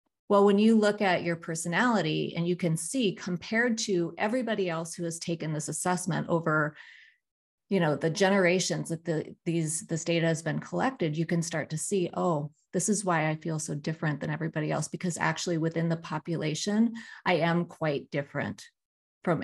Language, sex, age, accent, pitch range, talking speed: English, female, 30-49, American, 160-195 Hz, 180 wpm